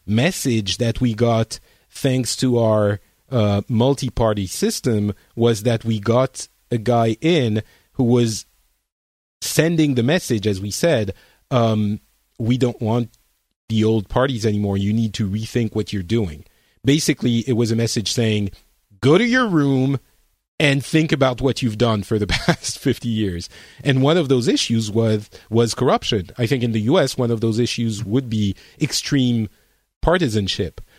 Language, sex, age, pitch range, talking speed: English, male, 40-59, 110-135 Hz, 160 wpm